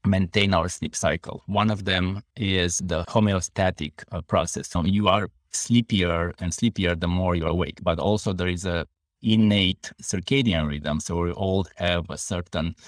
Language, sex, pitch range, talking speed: English, male, 80-95 Hz, 170 wpm